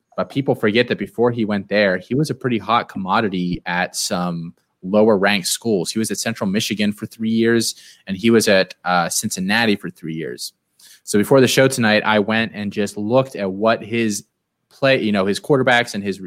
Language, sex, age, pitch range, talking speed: English, male, 20-39, 100-130 Hz, 205 wpm